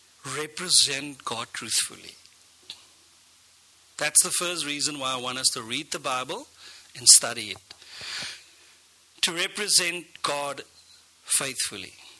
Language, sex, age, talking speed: English, male, 50-69, 110 wpm